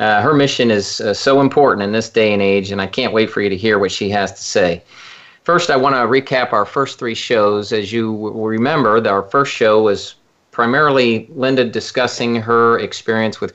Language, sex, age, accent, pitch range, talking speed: English, male, 40-59, American, 95-110 Hz, 215 wpm